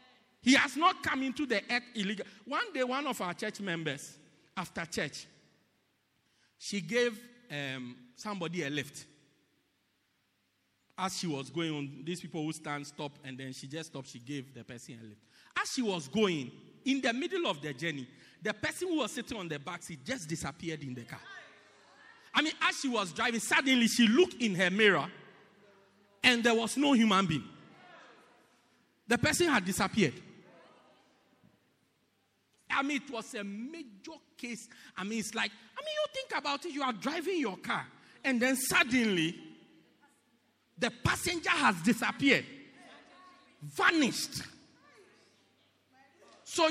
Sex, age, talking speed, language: male, 50-69, 155 wpm, English